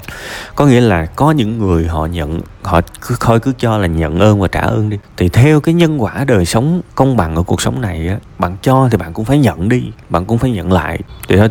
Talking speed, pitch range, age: 250 wpm, 90-125 Hz, 20-39